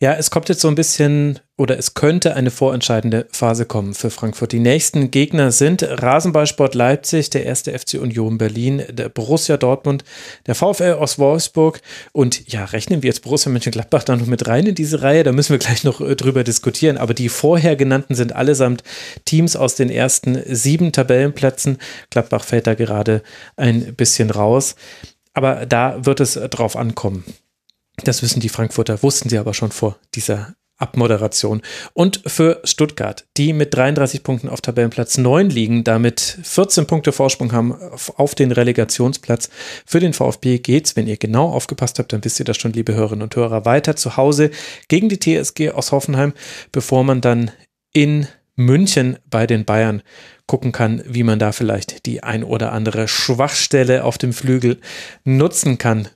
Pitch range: 115-145 Hz